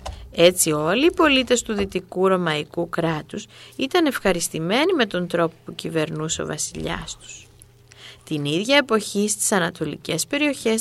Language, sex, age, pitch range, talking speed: Greek, female, 20-39, 155-230 Hz, 135 wpm